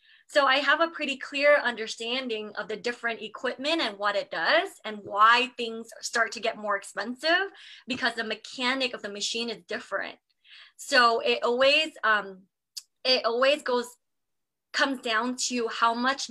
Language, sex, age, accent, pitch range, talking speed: English, female, 20-39, American, 215-265 Hz, 160 wpm